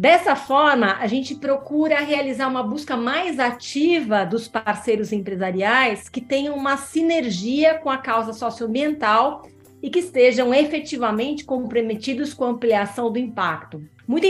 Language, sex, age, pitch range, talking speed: Portuguese, female, 30-49, 215-280 Hz, 135 wpm